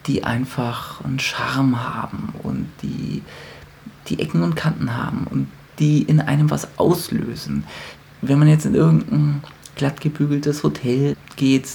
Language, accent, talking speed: German, German, 140 wpm